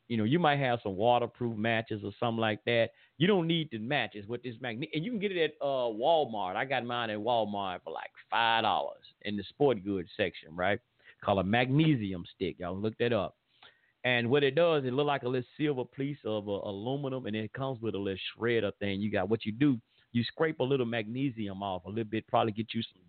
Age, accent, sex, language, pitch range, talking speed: 50-69, American, male, English, 100-125 Hz, 235 wpm